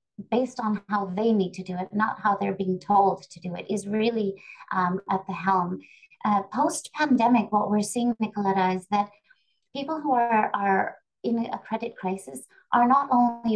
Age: 30-49